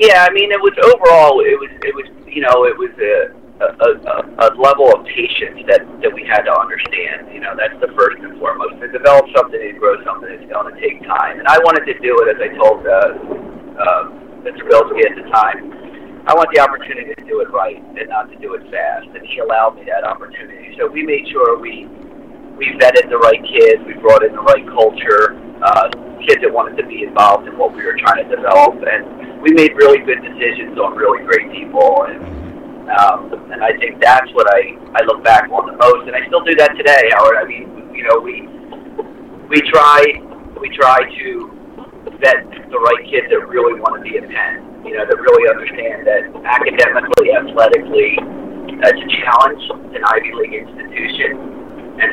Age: 50-69